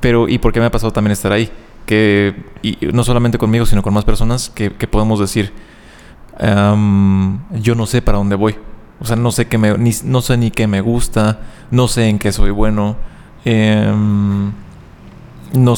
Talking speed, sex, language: 195 wpm, male, Spanish